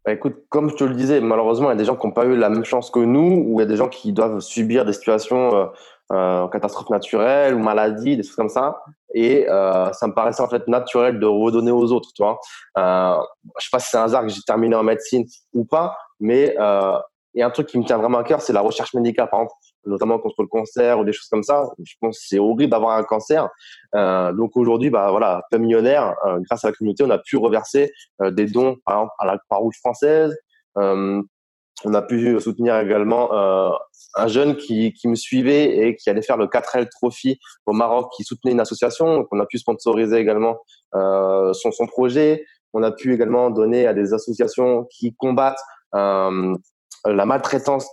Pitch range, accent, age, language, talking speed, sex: 105-125 Hz, French, 20-39, French, 230 wpm, male